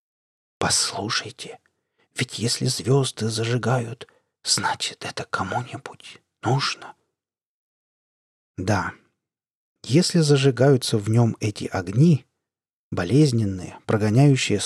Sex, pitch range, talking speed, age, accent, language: male, 110-150 Hz, 75 wpm, 40-59, native, Russian